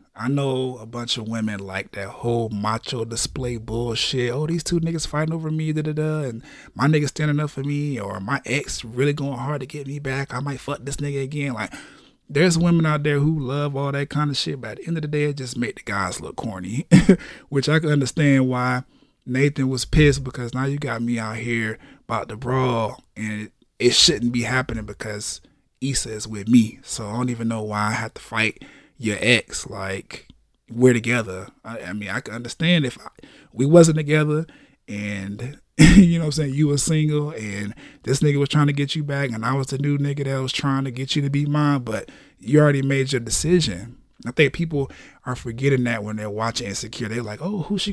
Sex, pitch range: male, 120-150 Hz